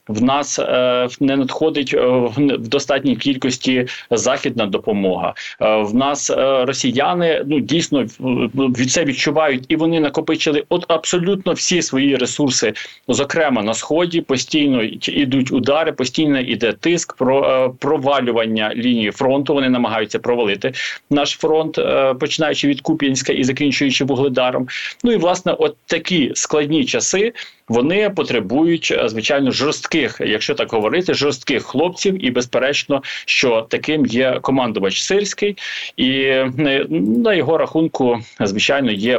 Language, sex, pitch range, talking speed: Ukrainian, male, 125-160 Hz, 120 wpm